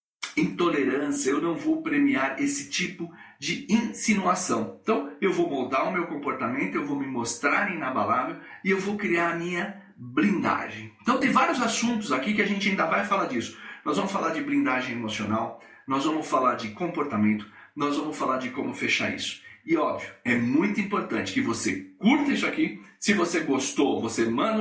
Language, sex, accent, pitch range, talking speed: Portuguese, male, Brazilian, 170-280 Hz, 180 wpm